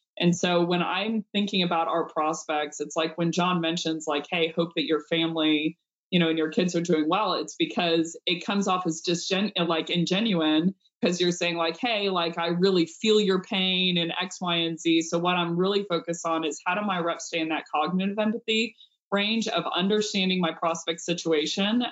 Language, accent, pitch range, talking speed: English, American, 160-185 Hz, 210 wpm